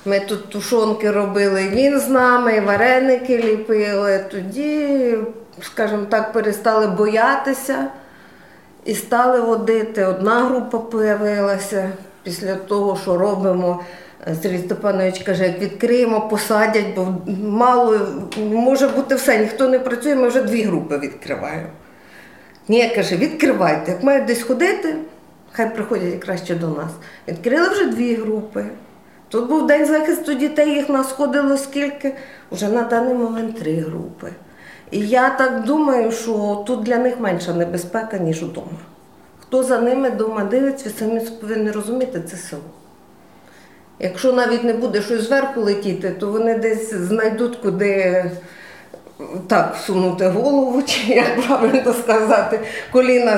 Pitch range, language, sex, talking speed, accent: 200-255 Hz, Ukrainian, female, 135 wpm, native